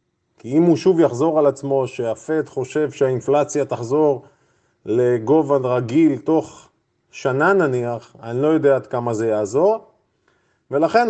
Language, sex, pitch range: Hebrew, male, 130-160 Hz